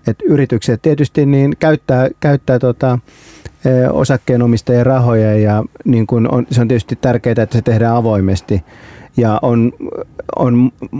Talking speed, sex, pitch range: 140 wpm, male, 105-125 Hz